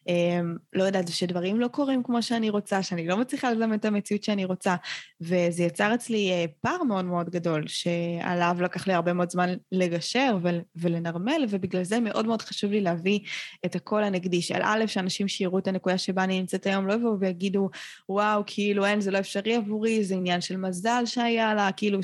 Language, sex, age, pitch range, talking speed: Hebrew, female, 20-39, 175-210 Hz, 195 wpm